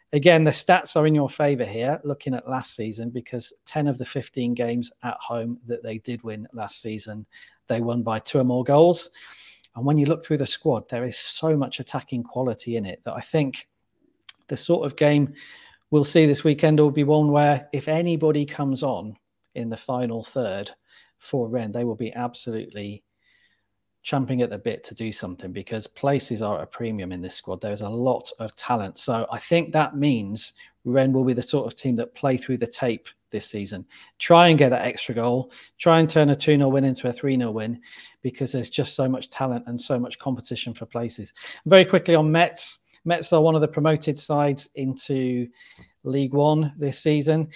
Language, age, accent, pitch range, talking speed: English, 40-59, British, 120-150 Hz, 200 wpm